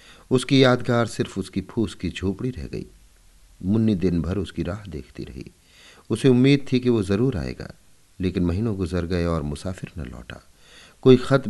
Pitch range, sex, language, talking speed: 80-115 Hz, male, Hindi, 170 wpm